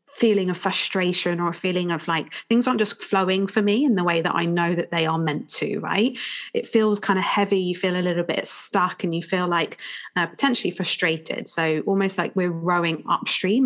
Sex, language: female, English